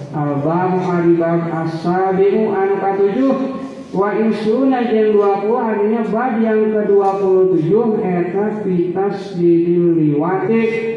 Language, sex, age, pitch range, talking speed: Indonesian, male, 50-69, 170-220 Hz, 100 wpm